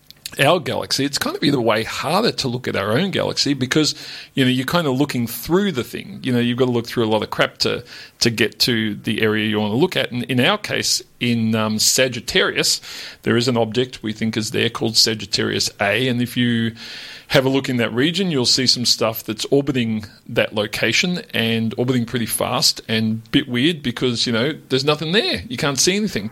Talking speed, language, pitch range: 225 wpm, English, 115-140 Hz